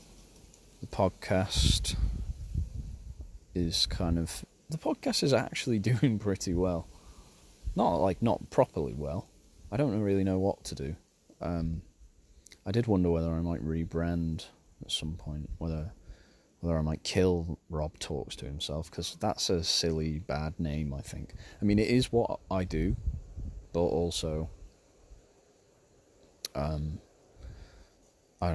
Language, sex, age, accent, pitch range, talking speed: English, male, 30-49, British, 75-90 Hz, 130 wpm